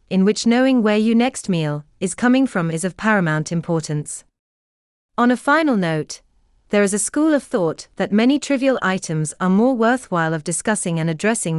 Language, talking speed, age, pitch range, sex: English, 180 wpm, 30-49, 160-235 Hz, female